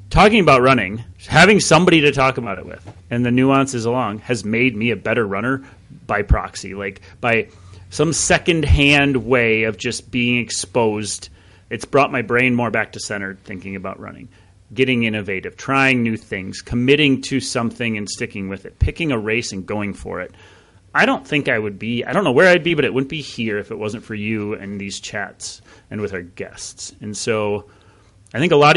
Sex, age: male, 30-49